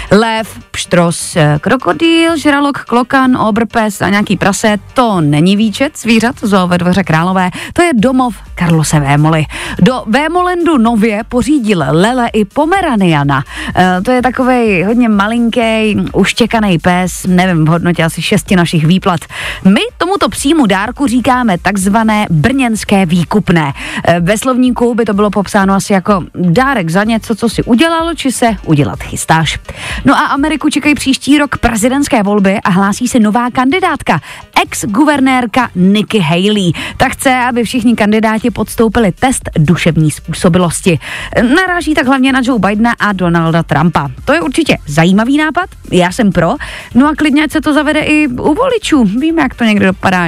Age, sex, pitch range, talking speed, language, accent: 30-49, female, 180-260 Hz, 150 wpm, Czech, native